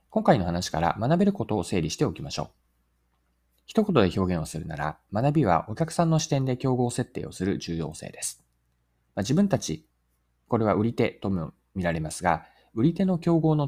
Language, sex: Japanese, male